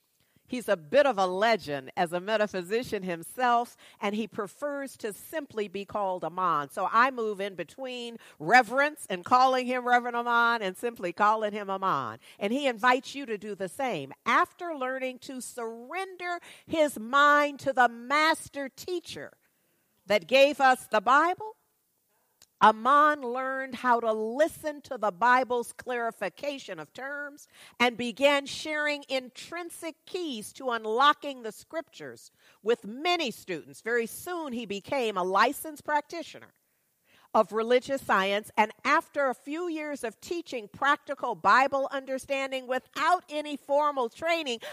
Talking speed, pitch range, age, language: 140 wpm, 220-290 Hz, 50-69, English